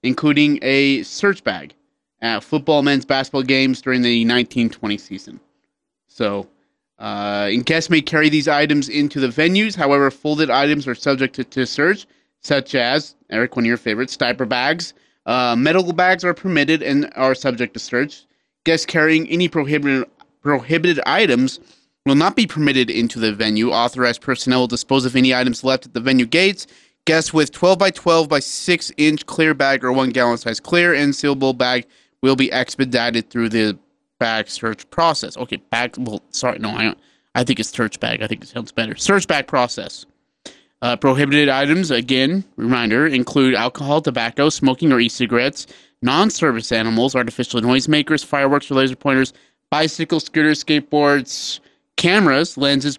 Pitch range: 125-150 Hz